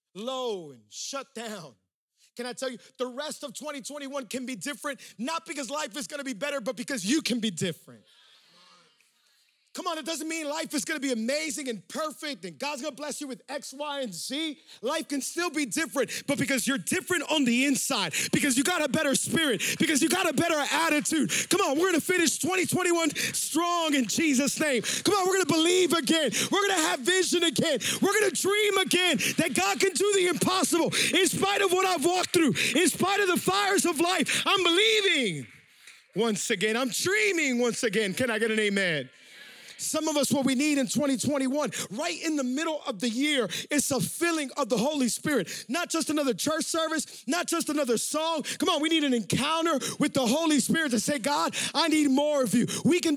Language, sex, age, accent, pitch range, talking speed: English, male, 30-49, American, 255-325 Hz, 215 wpm